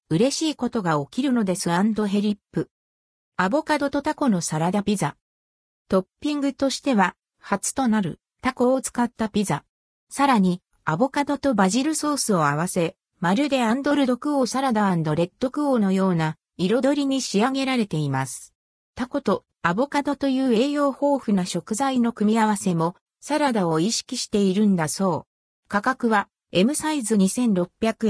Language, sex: Japanese, female